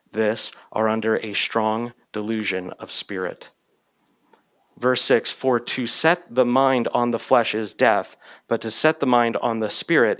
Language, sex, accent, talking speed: English, male, American, 165 wpm